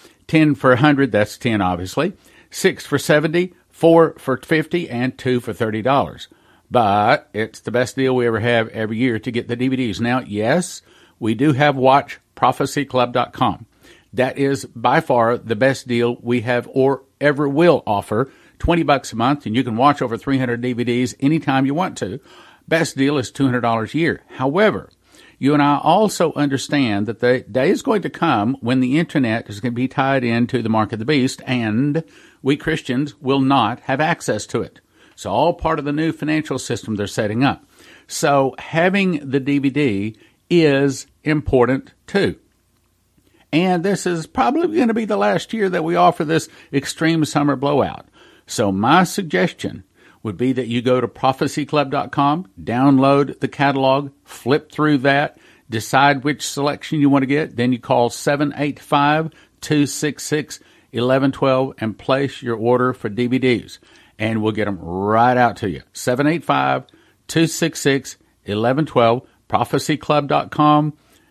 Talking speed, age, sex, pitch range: 155 wpm, 50-69, male, 120-150 Hz